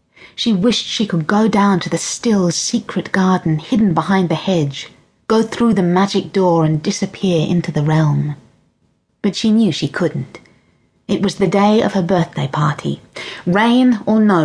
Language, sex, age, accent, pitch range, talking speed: English, female, 30-49, British, 165-215 Hz, 170 wpm